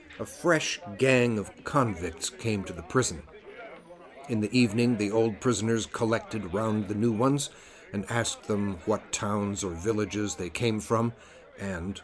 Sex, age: male, 50-69